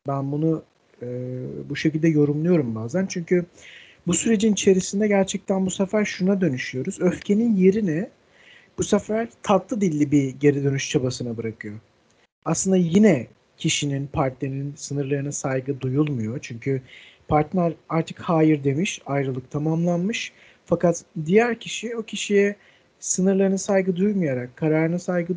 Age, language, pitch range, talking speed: 50-69, Turkish, 145-205 Hz, 120 wpm